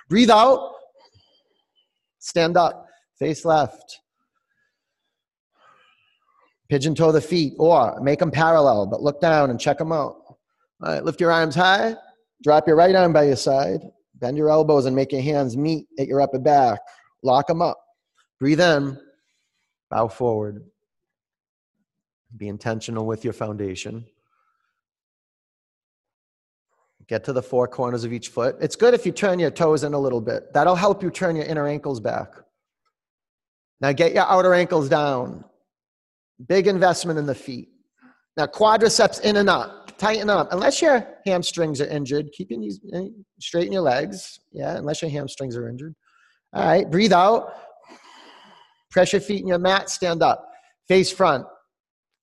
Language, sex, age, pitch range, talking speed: English, male, 30-49, 140-205 Hz, 155 wpm